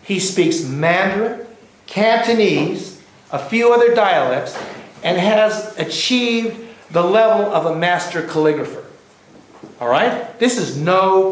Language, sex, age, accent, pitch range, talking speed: English, male, 60-79, American, 155-225 Hz, 115 wpm